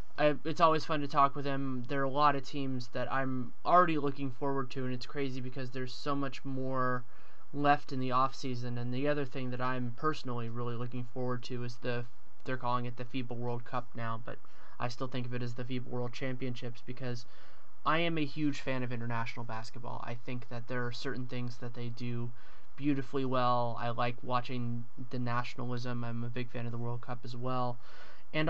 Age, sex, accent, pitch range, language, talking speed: 20-39, male, American, 120-140 Hz, English, 215 wpm